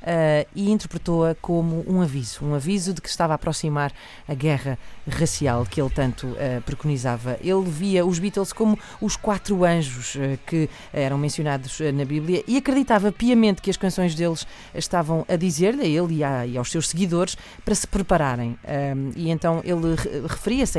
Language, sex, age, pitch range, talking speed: Portuguese, female, 40-59, 140-175 Hz, 160 wpm